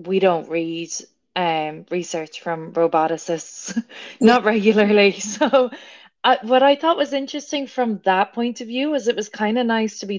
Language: English